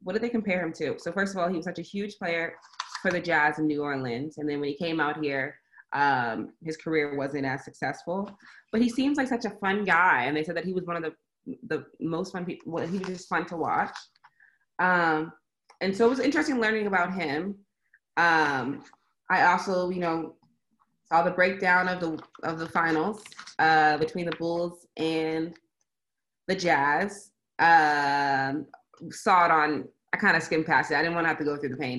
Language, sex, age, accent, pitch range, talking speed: English, female, 20-39, American, 155-180 Hz, 210 wpm